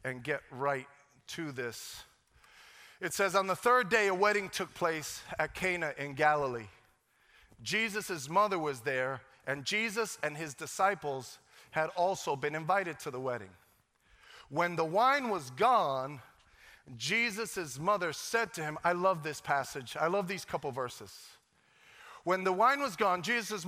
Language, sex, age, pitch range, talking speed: English, male, 40-59, 150-205 Hz, 150 wpm